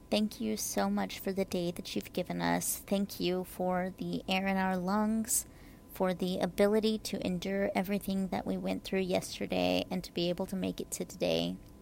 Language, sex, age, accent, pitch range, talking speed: English, female, 30-49, American, 175-200 Hz, 200 wpm